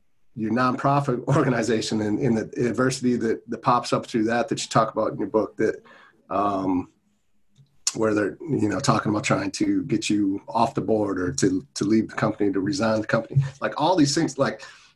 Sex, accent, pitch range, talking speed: male, American, 105-135 Hz, 200 wpm